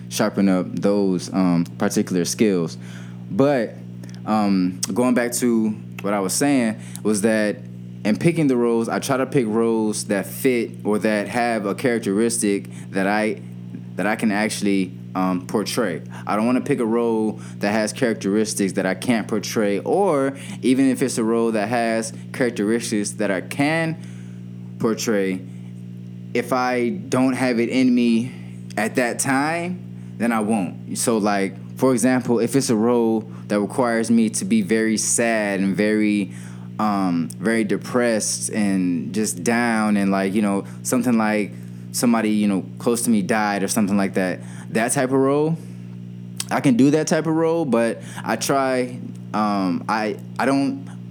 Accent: American